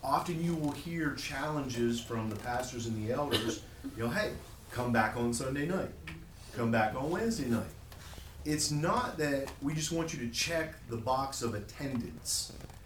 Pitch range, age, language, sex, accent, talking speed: 120-180 Hz, 40-59, English, male, American, 175 wpm